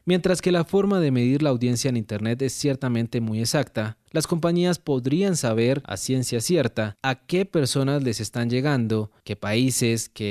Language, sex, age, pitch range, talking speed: Spanish, male, 30-49, 110-145 Hz, 175 wpm